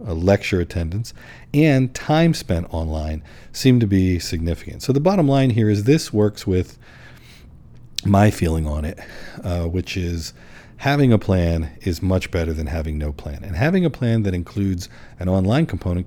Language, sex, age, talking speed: English, male, 50-69, 170 wpm